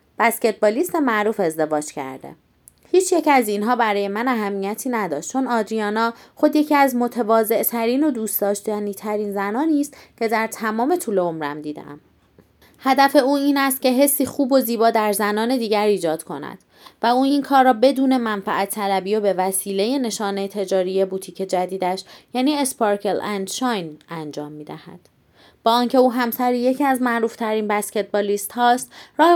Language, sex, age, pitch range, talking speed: Persian, female, 30-49, 200-255 Hz, 155 wpm